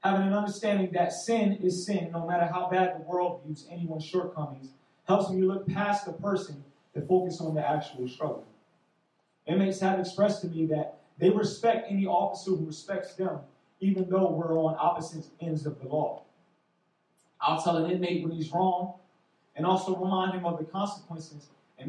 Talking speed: 180 wpm